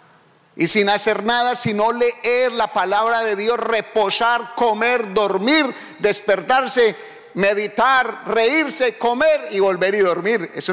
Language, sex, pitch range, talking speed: English, male, 155-230 Hz, 125 wpm